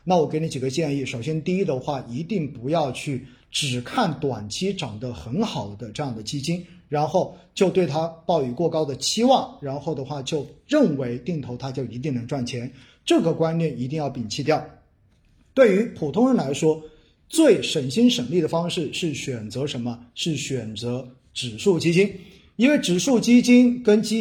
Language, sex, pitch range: Chinese, male, 130-185 Hz